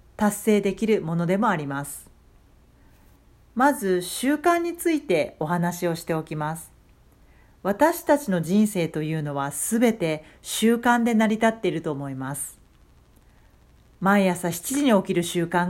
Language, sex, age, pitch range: Japanese, female, 40-59, 155-220 Hz